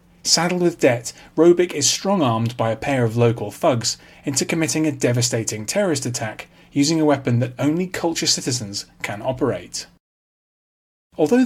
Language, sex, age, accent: English, male, 30-49, British